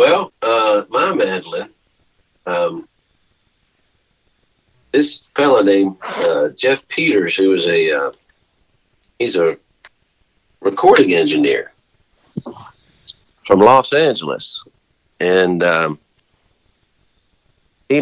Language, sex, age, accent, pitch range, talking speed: English, male, 50-69, American, 90-120 Hz, 85 wpm